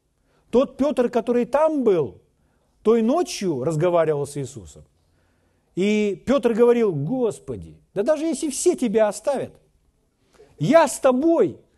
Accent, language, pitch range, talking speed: native, Russian, 155-245 Hz, 115 wpm